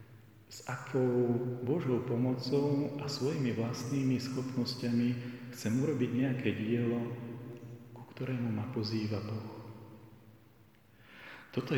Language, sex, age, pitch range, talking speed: Slovak, male, 40-59, 115-130 Hz, 90 wpm